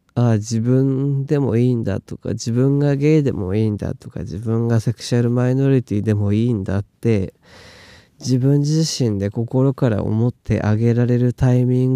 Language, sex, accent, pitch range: Japanese, male, native, 105-125 Hz